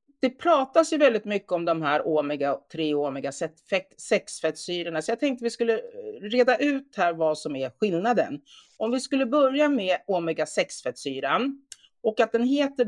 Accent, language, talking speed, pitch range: native, Swedish, 160 wpm, 170-255 Hz